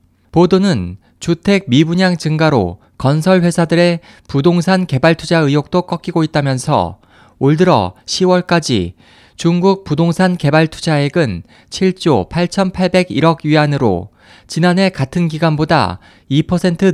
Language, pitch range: Korean, 130-175 Hz